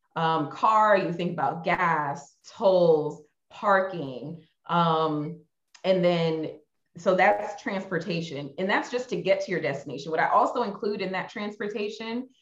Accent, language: American, English